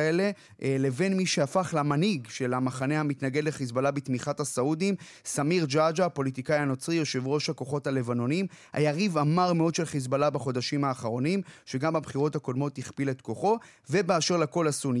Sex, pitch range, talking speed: male, 135-175 Hz, 140 wpm